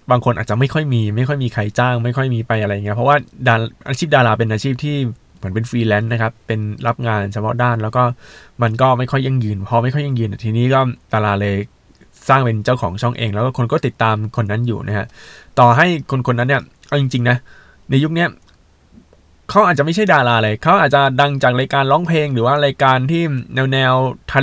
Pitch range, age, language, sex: 110-130 Hz, 20-39, Thai, male